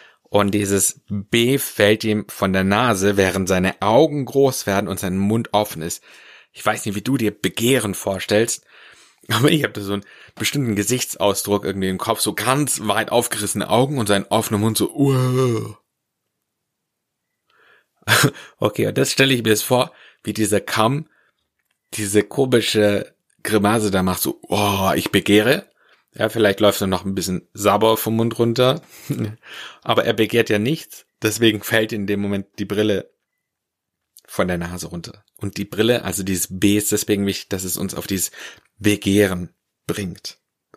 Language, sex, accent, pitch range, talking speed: German, male, German, 100-115 Hz, 165 wpm